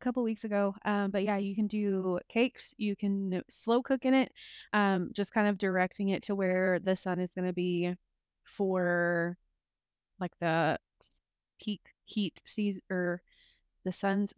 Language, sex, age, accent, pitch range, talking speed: English, female, 20-39, American, 180-205 Hz, 165 wpm